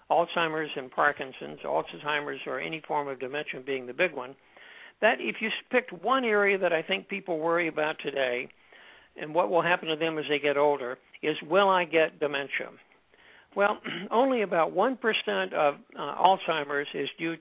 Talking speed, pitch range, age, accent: 170 wpm, 145-180 Hz, 60-79, American